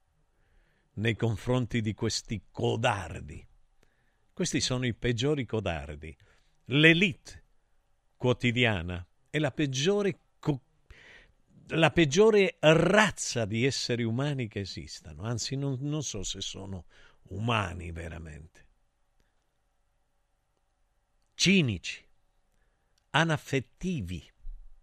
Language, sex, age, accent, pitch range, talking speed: Italian, male, 50-69, native, 95-145 Hz, 80 wpm